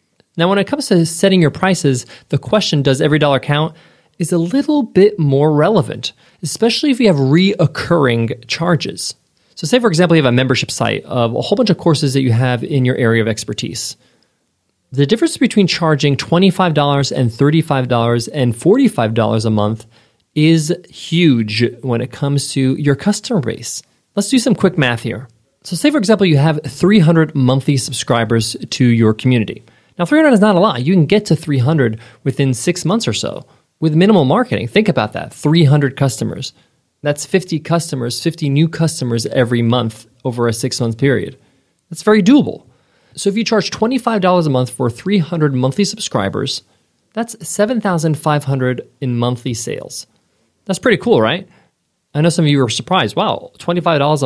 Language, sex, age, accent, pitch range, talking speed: English, male, 30-49, American, 125-175 Hz, 170 wpm